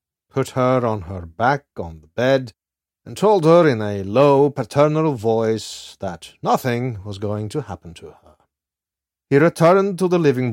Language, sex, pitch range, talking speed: English, male, 90-130 Hz, 165 wpm